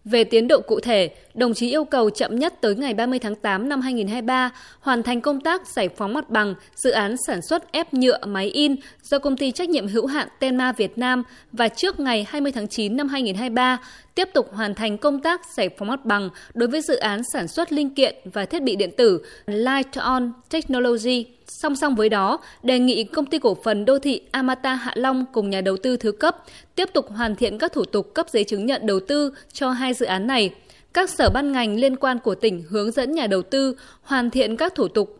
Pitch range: 215-280 Hz